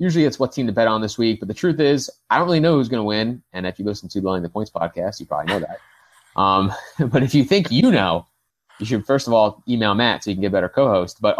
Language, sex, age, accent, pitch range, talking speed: English, male, 20-39, American, 95-125 Hz, 295 wpm